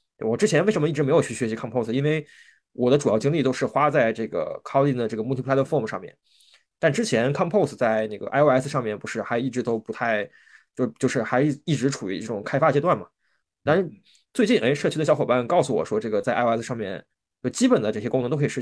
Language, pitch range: Chinese, 115-145 Hz